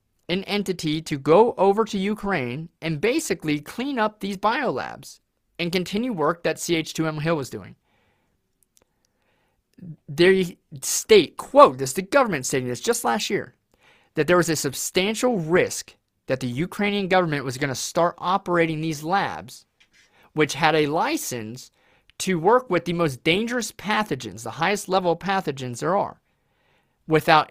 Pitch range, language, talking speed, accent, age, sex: 135-195 Hz, English, 150 wpm, American, 30-49, male